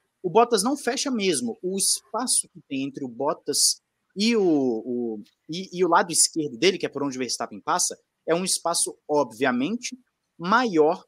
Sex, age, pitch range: male, 20-39, 155-235 Hz